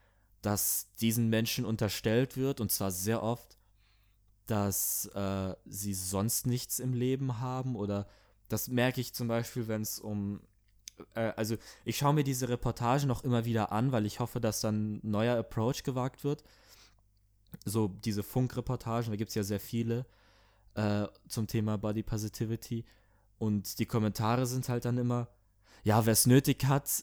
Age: 20-39